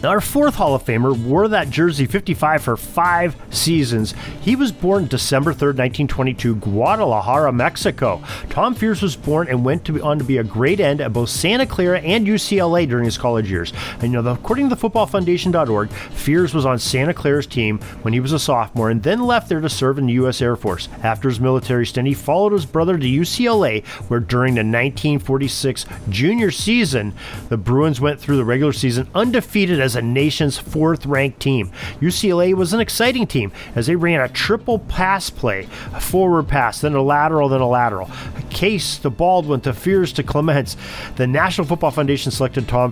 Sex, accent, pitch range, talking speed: male, American, 120-170 Hz, 195 wpm